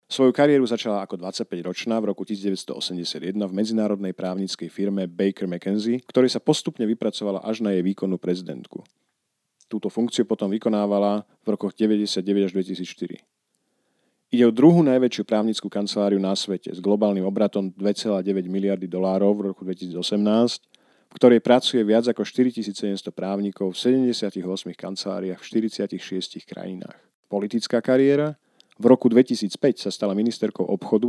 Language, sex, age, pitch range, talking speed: Slovak, male, 40-59, 95-115 Hz, 135 wpm